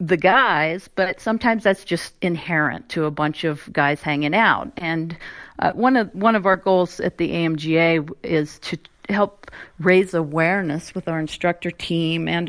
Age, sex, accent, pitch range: 50-69, female, American, 155-185 Hz